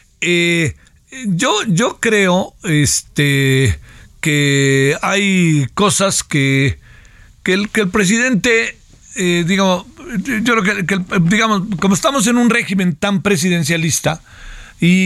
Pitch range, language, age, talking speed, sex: 160-205 Hz, Spanish, 50-69, 115 wpm, male